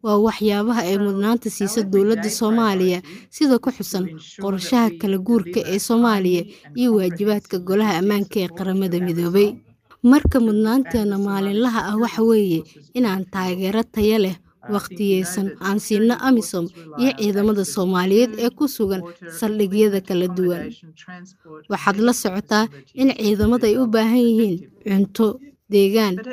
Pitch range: 190-230 Hz